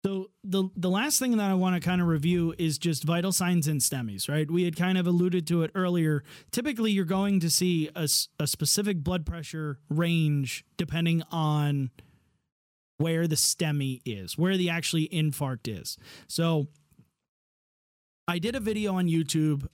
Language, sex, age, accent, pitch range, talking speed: English, male, 30-49, American, 150-190 Hz, 170 wpm